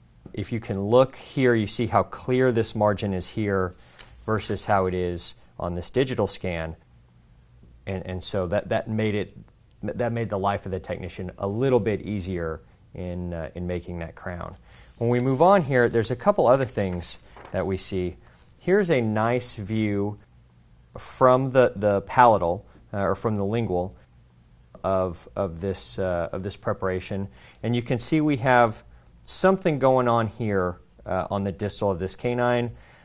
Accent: American